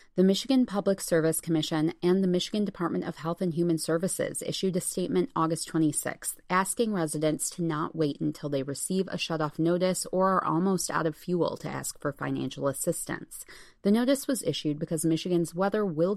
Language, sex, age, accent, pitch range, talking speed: English, female, 30-49, American, 160-195 Hz, 180 wpm